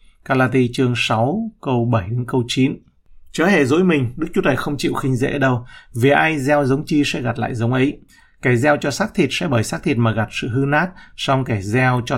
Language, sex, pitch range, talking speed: Vietnamese, male, 115-145 Hz, 235 wpm